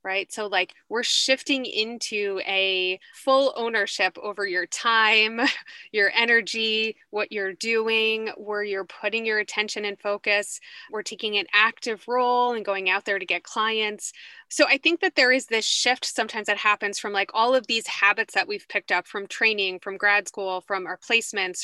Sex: female